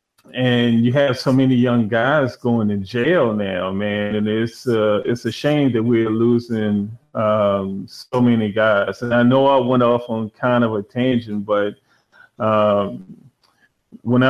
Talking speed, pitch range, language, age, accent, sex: 165 wpm, 110-125 Hz, English, 30-49, American, male